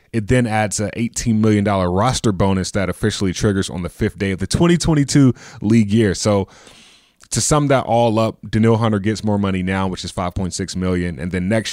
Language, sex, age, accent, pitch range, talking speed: English, male, 20-39, American, 95-115 Hz, 200 wpm